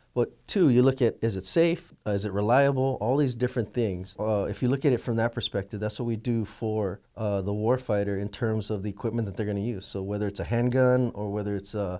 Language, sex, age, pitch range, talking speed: English, male, 30-49, 105-120 Hz, 260 wpm